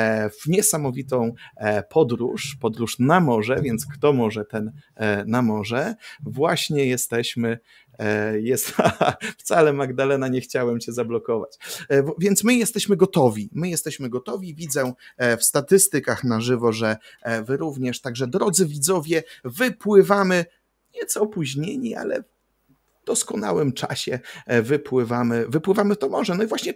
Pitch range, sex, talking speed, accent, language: 125-185 Hz, male, 120 wpm, native, Polish